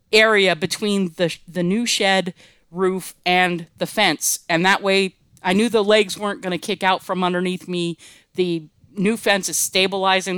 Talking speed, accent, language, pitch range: 175 wpm, American, English, 175-210 Hz